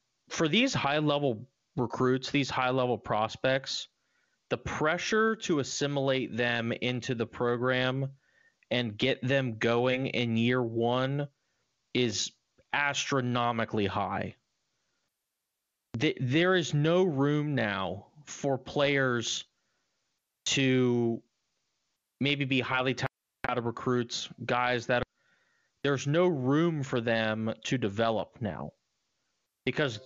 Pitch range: 115-135 Hz